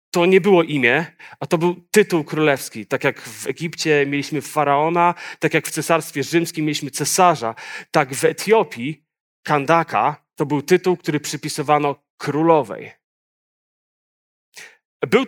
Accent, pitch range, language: native, 140-170 Hz, Polish